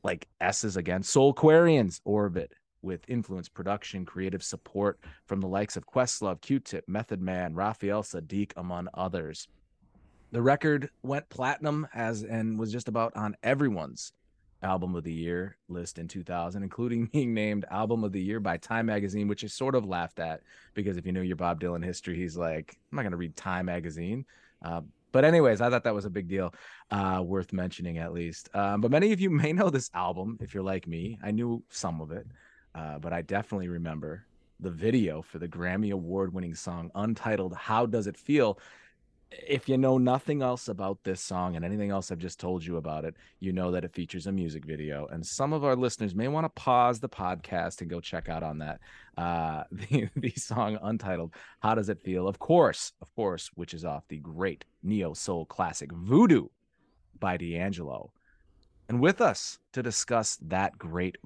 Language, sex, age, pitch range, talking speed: English, male, 20-39, 90-115 Hz, 190 wpm